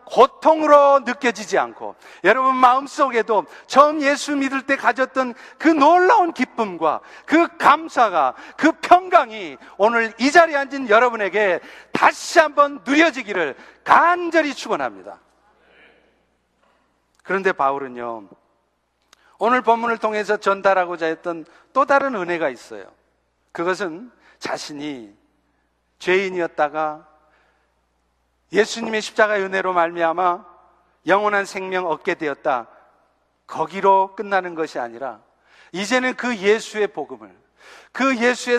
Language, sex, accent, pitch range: Korean, male, native, 170-255 Hz